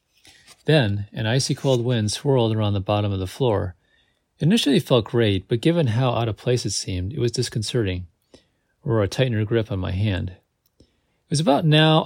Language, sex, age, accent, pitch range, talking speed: English, male, 40-59, American, 100-125 Hz, 190 wpm